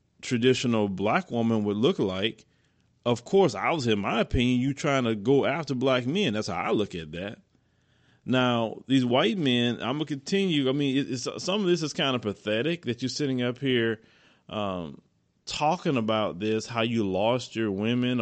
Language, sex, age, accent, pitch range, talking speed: English, male, 30-49, American, 105-125 Hz, 195 wpm